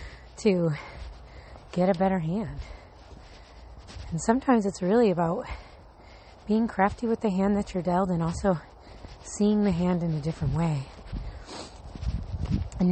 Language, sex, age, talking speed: English, female, 30-49, 130 wpm